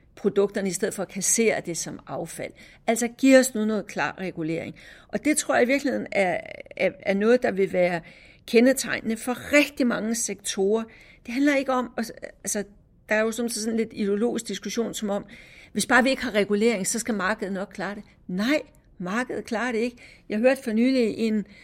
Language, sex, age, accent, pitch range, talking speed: Danish, female, 60-79, native, 200-245 Hz, 200 wpm